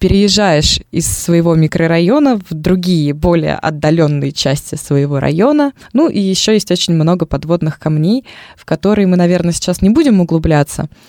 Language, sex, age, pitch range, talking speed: Russian, female, 20-39, 165-200 Hz, 145 wpm